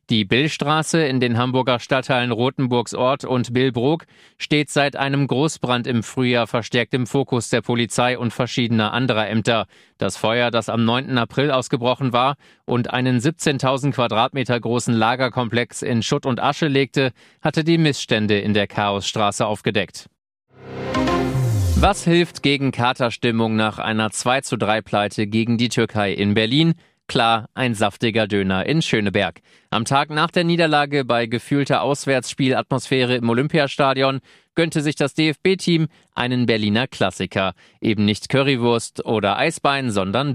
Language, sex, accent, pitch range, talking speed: German, male, German, 115-135 Hz, 140 wpm